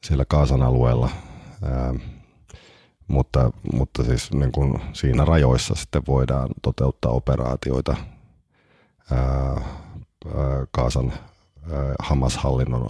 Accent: native